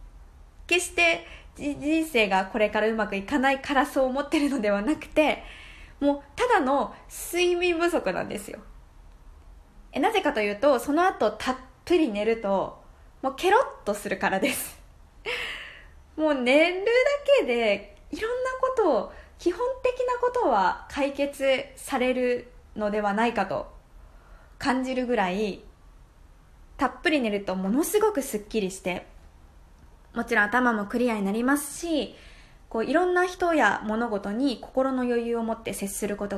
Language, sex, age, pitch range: Japanese, female, 20-39, 190-295 Hz